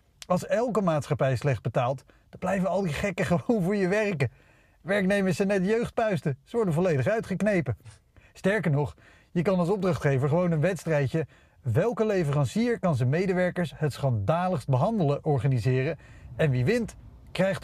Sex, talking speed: male, 150 wpm